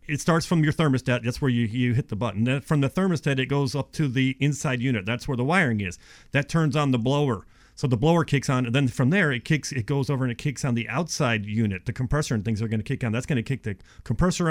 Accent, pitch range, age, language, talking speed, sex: American, 115-145 Hz, 40-59, English, 285 wpm, male